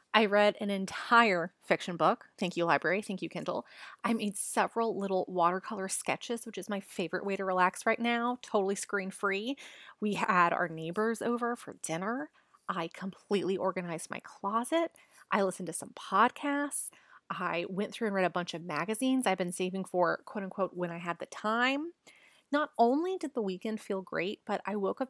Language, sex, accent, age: English, female, American, 30-49